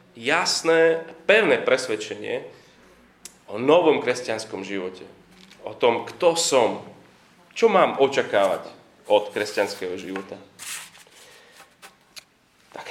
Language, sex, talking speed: Slovak, male, 85 wpm